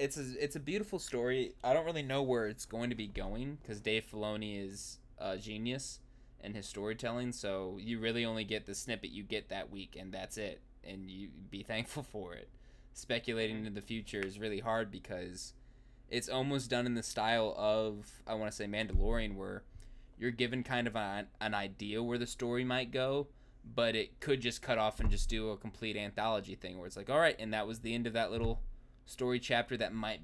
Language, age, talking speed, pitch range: English, 10-29, 215 wpm, 105-125 Hz